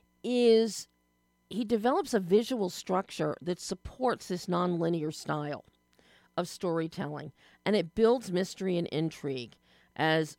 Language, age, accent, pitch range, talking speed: English, 40-59, American, 165-220 Hz, 120 wpm